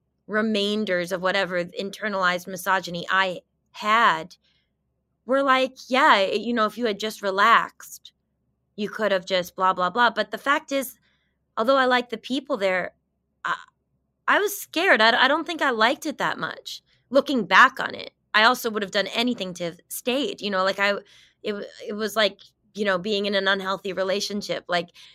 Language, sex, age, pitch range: English, female, 20-39, 180-220 Hz